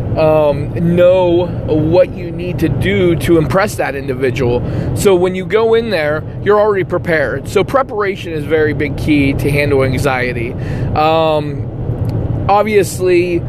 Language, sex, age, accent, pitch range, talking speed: English, male, 20-39, American, 140-175 Hz, 140 wpm